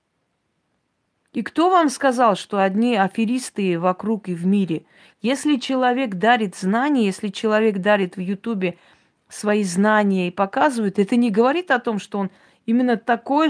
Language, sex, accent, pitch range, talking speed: Russian, female, native, 195-245 Hz, 145 wpm